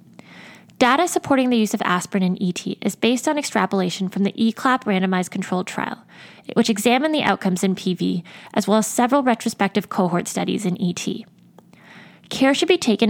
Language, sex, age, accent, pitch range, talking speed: English, female, 10-29, American, 190-235 Hz, 170 wpm